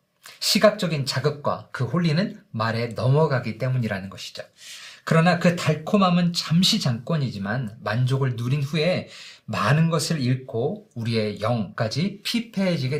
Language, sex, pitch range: Korean, male, 120-175 Hz